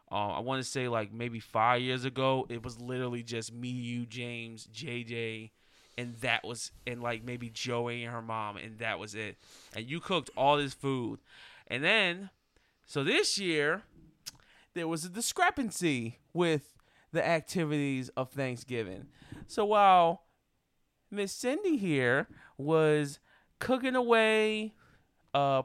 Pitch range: 120-190 Hz